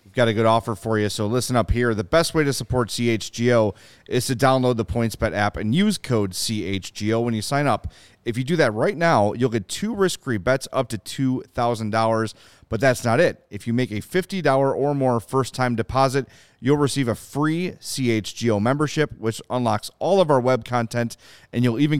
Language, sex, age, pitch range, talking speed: English, male, 30-49, 110-140 Hz, 200 wpm